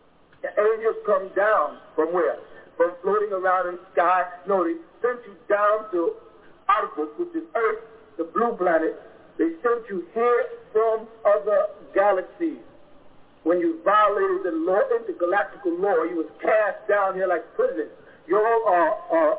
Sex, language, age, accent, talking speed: male, English, 50-69, American, 155 wpm